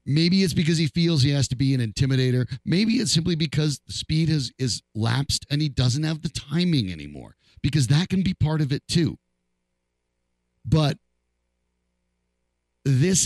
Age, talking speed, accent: 50-69, 165 wpm, American